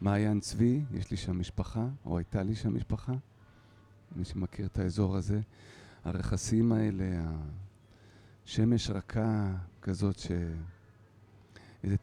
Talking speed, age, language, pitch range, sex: 115 wpm, 40-59, Hebrew, 100-120 Hz, male